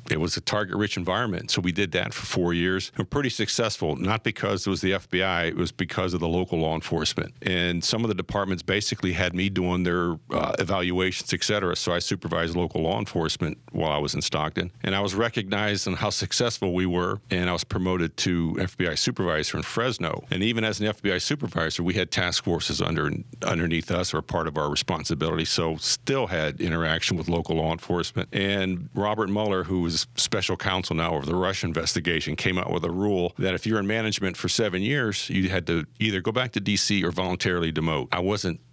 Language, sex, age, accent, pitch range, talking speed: English, male, 50-69, American, 85-105 Hz, 210 wpm